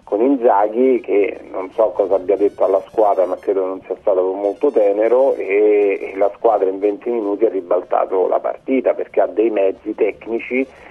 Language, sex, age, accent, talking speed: Italian, male, 40-59, native, 175 wpm